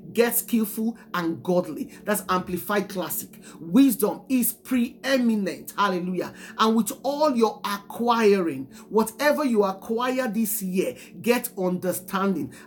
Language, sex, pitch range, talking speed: English, male, 200-260 Hz, 110 wpm